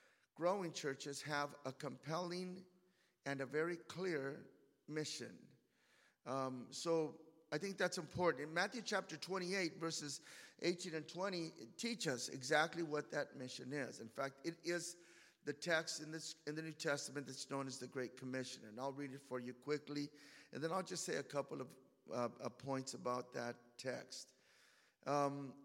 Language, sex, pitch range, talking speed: English, male, 140-170 Hz, 170 wpm